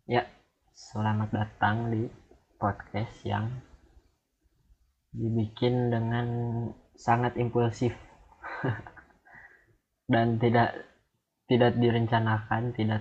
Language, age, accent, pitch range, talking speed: Indonesian, 20-39, native, 105-115 Hz, 70 wpm